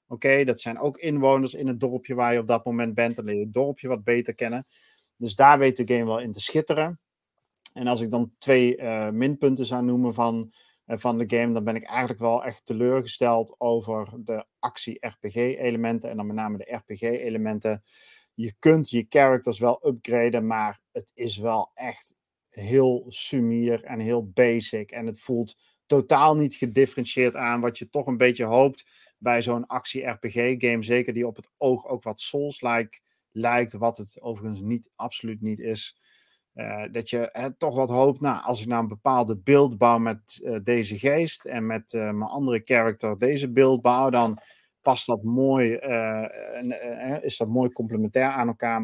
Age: 40-59